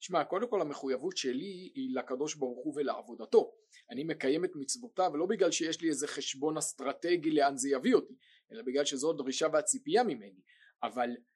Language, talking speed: Hebrew, 170 wpm